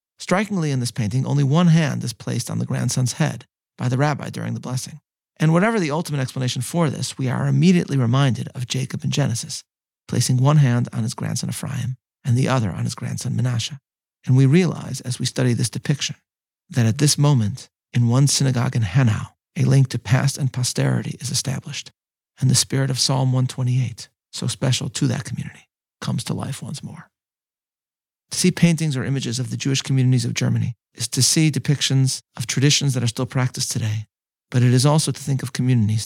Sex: male